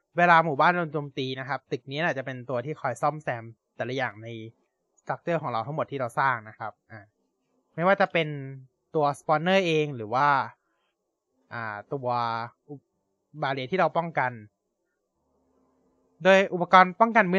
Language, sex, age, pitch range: Thai, male, 20-39, 125-165 Hz